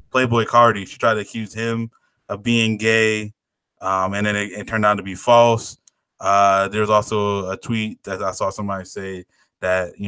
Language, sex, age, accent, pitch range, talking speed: English, male, 20-39, American, 100-115 Hz, 190 wpm